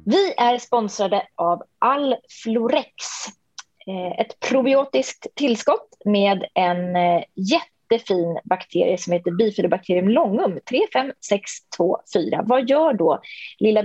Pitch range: 180-245 Hz